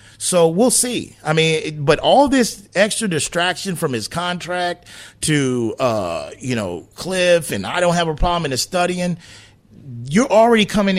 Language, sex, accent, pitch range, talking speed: English, male, American, 155-230 Hz, 165 wpm